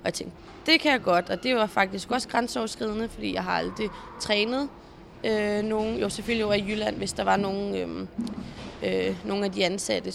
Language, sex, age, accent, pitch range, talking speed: Danish, female, 20-39, native, 190-235 Hz, 205 wpm